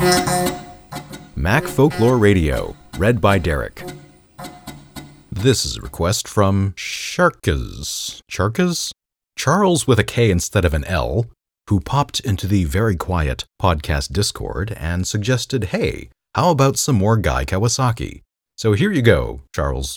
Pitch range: 80-130 Hz